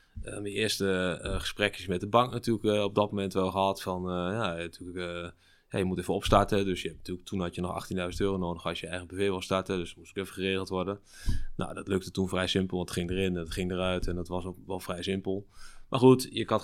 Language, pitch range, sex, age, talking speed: Dutch, 90-105 Hz, male, 20-39, 265 wpm